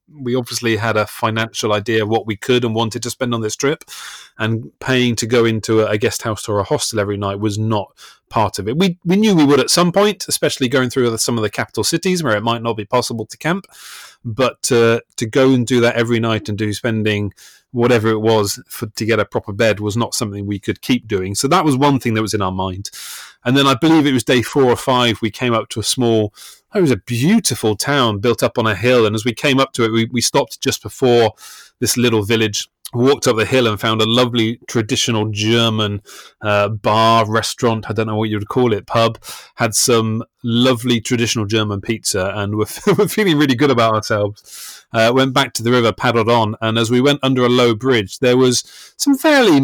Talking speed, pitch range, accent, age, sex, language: 235 wpm, 110-130 Hz, British, 30-49, male, English